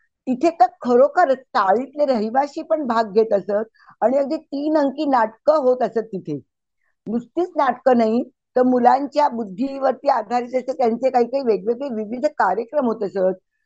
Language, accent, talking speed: Marathi, native, 155 wpm